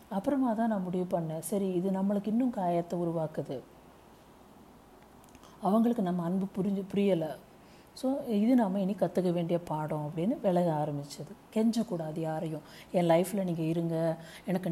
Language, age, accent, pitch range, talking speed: Tamil, 50-69, native, 160-200 Hz, 135 wpm